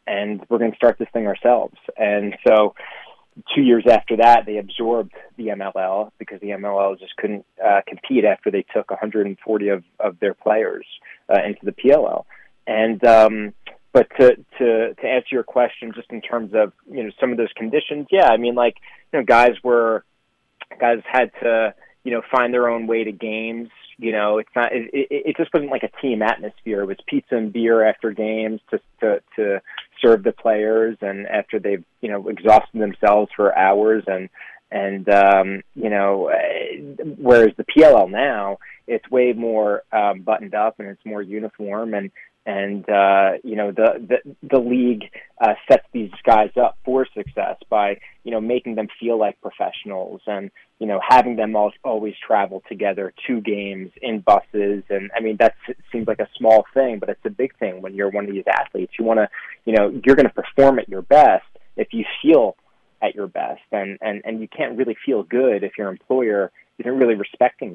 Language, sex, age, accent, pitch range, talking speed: English, male, 30-49, American, 100-120 Hz, 195 wpm